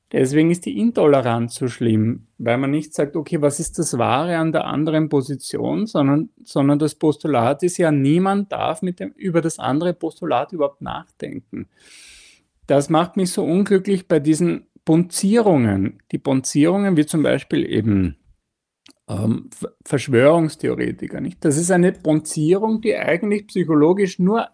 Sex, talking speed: male, 145 wpm